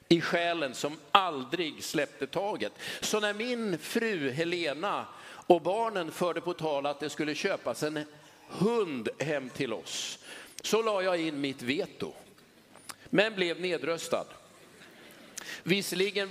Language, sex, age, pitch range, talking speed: Swedish, male, 50-69, 160-205 Hz, 130 wpm